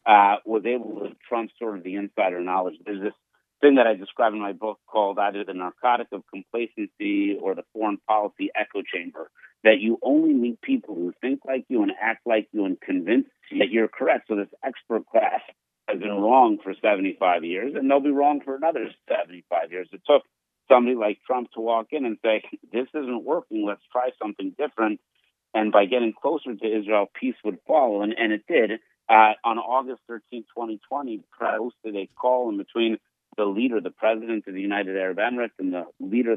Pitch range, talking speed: 105-125 Hz, 200 wpm